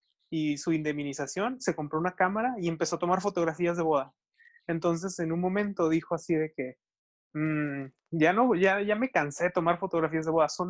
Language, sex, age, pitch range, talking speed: Spanish, male, 20-39, 150-180 Hz, 195 wpm